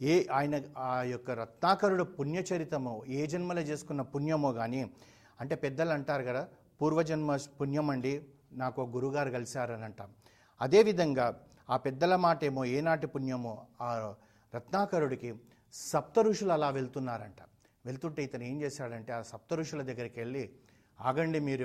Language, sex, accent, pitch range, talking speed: Telugu, male, native, 115-145 Hz, 120 wpm